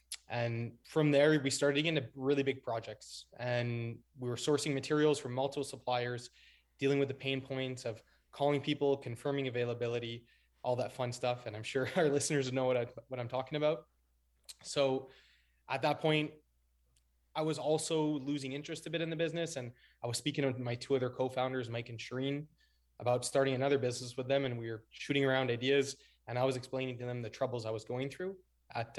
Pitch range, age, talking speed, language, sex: 120-140 Hz, 20-39, 195 wpm, English, male